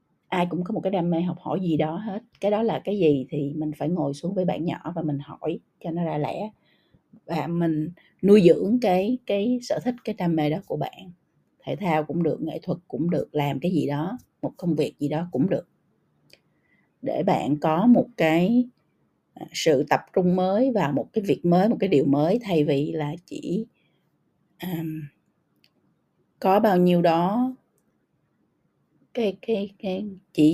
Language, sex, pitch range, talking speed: Vietnamese, female, 155-190 Hz, 190 wpm